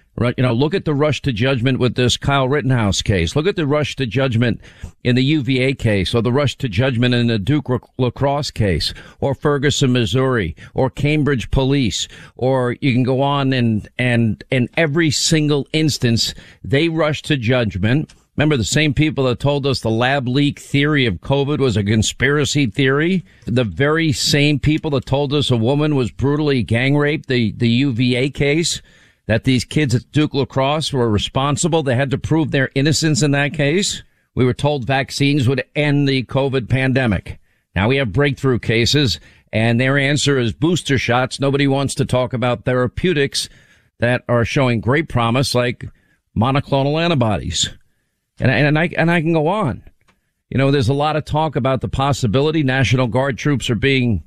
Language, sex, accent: English, male, American